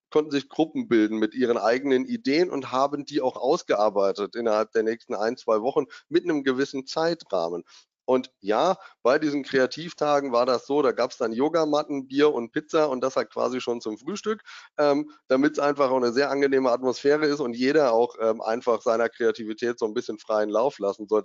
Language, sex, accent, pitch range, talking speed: German, male, German, 120-155 Hz, 200 wpm